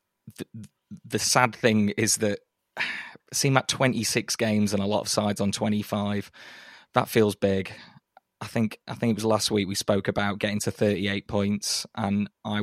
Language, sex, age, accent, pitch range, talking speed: English, male, 20-39, British, 100-110 Hz, 190 wpm